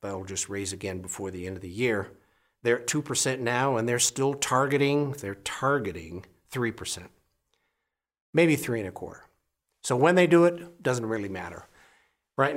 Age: 60-79